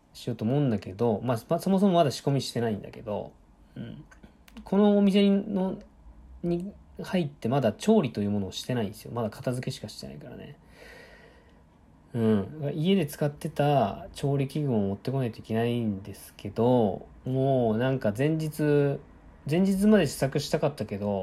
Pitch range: 110-165 Hz